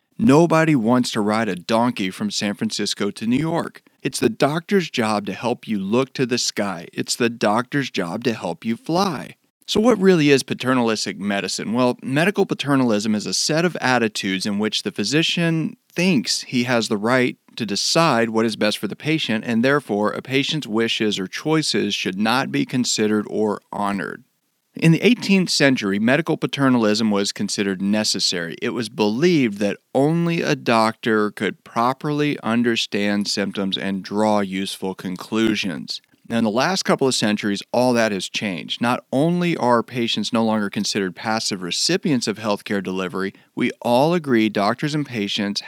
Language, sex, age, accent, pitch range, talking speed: English, male, 40-59, American, 105-150 Hz, 170 wpm